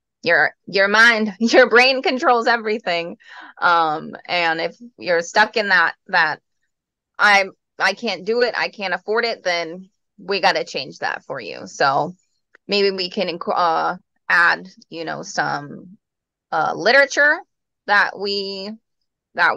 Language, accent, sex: English, American, female